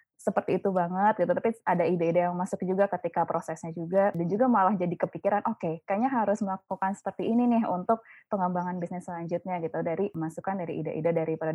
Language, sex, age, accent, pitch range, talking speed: Indonesian, female, 20-39, native, 175-210 Hz, 185 wpm